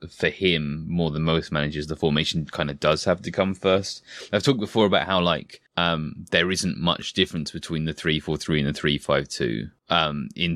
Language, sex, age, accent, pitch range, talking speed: English, male, 20-39, British, 75-90 Hz, 195 wpm